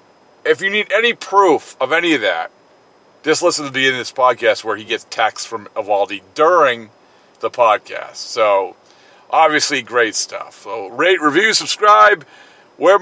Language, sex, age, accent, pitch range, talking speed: English, male, 40-59, American, 120-150 Hz, 160 wpm